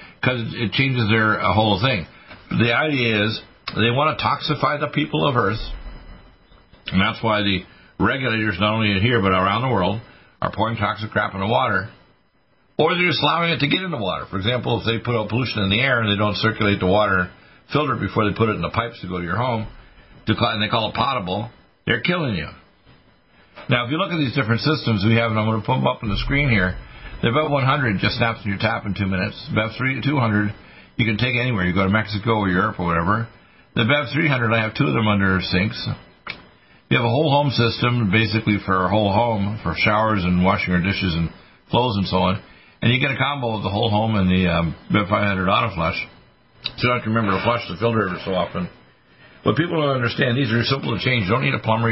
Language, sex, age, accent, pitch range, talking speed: English, male, 50-69, American, 100-120 Hz, 230 wpm